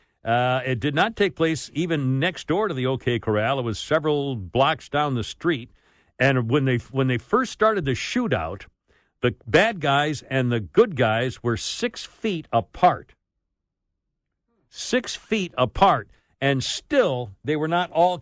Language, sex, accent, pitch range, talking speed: English, male, American, 120-155 Hz, 160 wpm